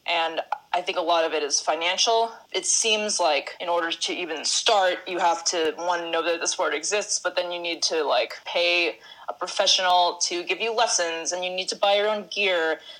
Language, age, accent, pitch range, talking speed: English, 20-39, American, 170-195 Hz, 215 wpm